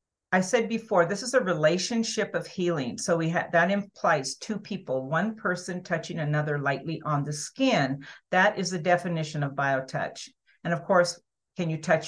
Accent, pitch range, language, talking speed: American, 150-200 Hz, English, 180 wpm